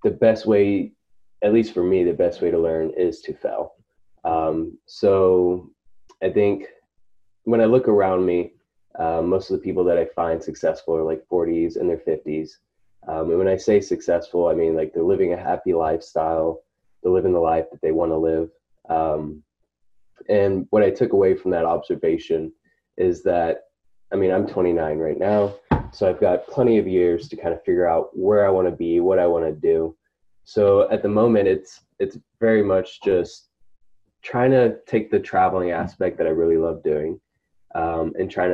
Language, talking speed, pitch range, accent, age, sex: English, 185 wpm, 85-140 Hz, American, 20-39, male